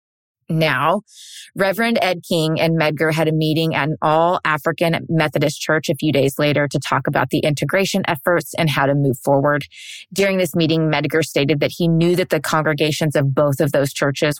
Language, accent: English, American